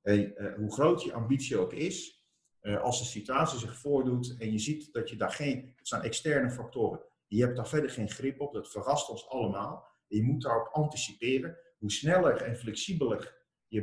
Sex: male